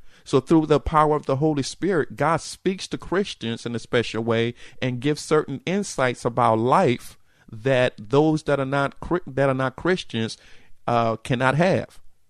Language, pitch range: English, 115-135 Hz